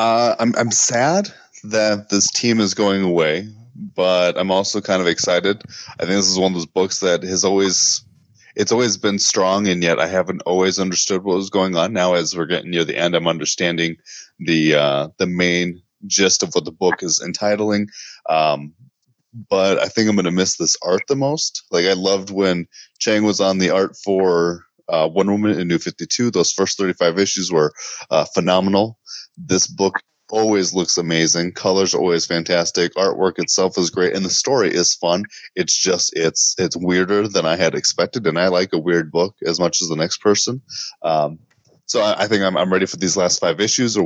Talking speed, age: 205 wpm, 20-39